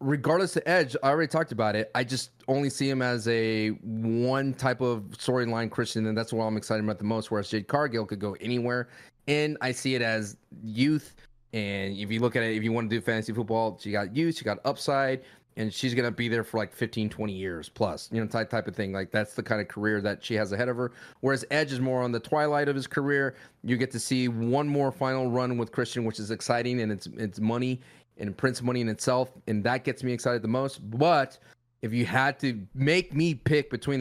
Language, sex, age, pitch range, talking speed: English, male, 30-49, 110-130 Hz, 240 wpm